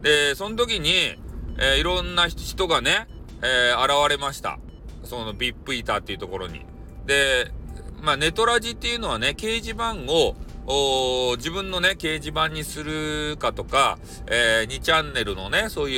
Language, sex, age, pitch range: Japanese, male, 40-59, 115-170 Hz